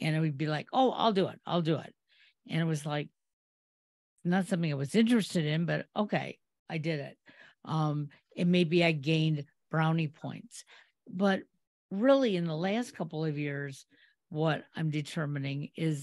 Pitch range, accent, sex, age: 150-185 Hz, American, female, 50-69